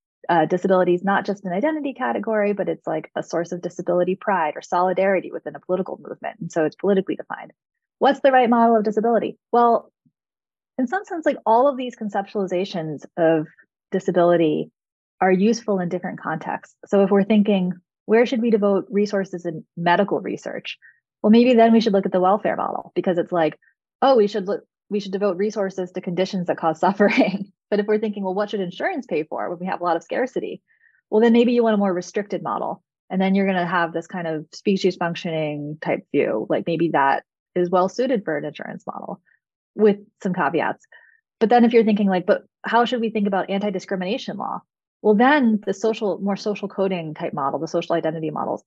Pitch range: 175-220 Hz